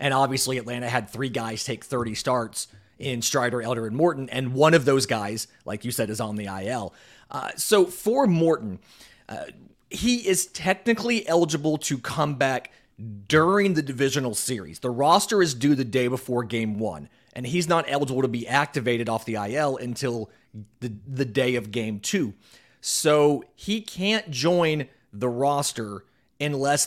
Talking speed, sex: 165 wpm, male